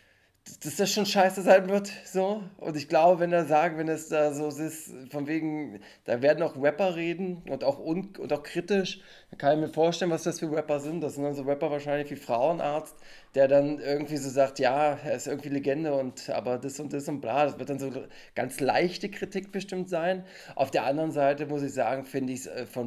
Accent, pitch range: German, 130-155 Hz